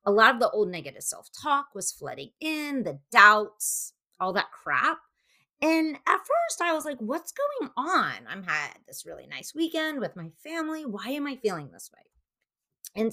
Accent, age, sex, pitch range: American, 30-49, female, 200-300 Hz